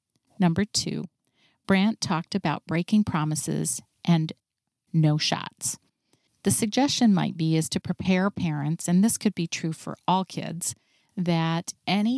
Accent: American